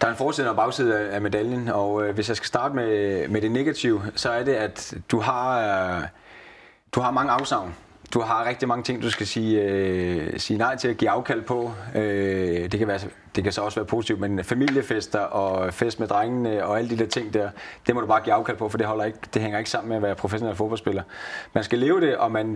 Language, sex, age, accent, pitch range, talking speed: Danish, male, 30-49, native, 105-120 Hz, 245 wpm